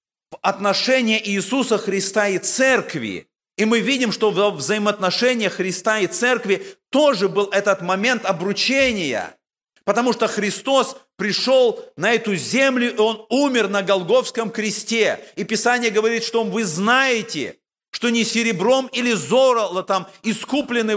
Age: 40-59